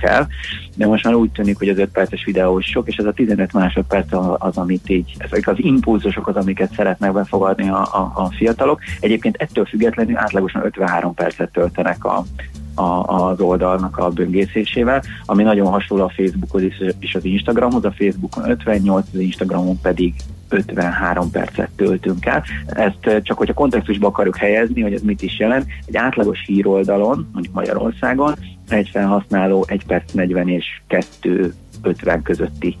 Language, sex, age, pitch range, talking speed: Hungarian, male, 30-49, 90-100 Hz, 160 wpm